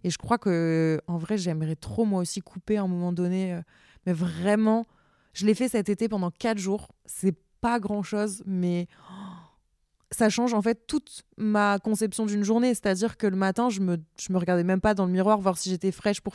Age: 20-39